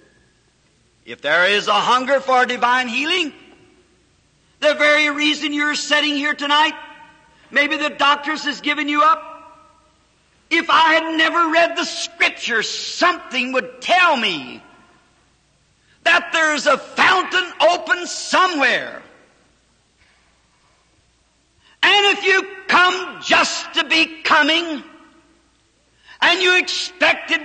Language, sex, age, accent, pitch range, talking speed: English, male, 50-69, American, 285-335 Hz, 110 wpm